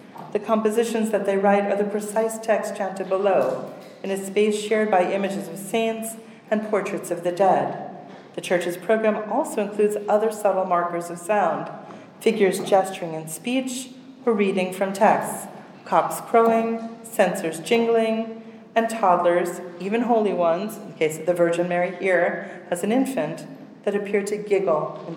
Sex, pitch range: female, 180-220 Hz